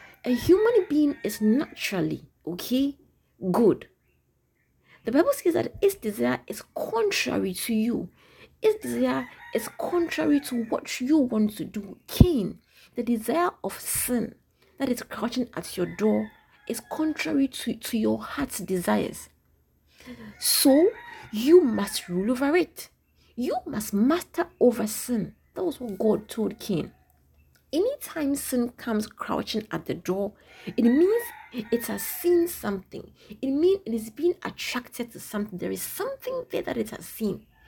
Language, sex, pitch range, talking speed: English, female, 220-315 Hz, 145 wpm